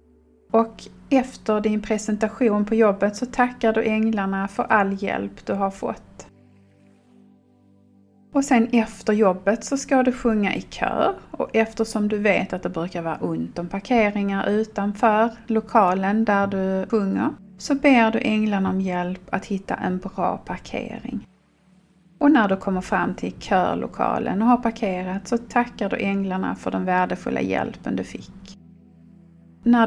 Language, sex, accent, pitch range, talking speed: Swedish, female, native, 180-225 Hz, 150 wpm